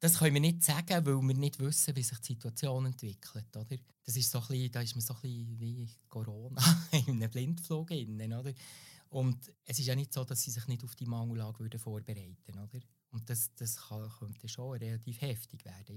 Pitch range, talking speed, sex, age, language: 120-150 Hz, 205 wpm, male, 20-39, German